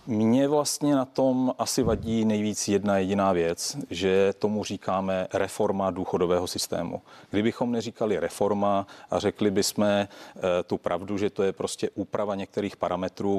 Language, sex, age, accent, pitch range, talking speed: Czech, male, 40-59, native, 100-125 Hz, 140 wpm